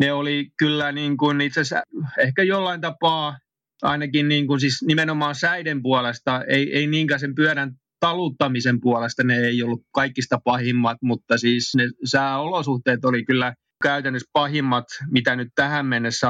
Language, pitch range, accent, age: Finnish, 120-140 Hz, native, 30-49